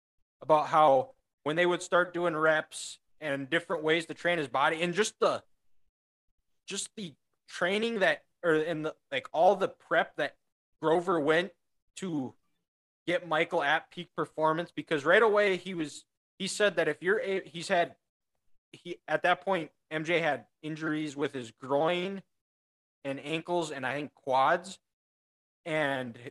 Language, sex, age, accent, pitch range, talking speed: English, male, 20-39, American, 135-175 Hz, 155 wpm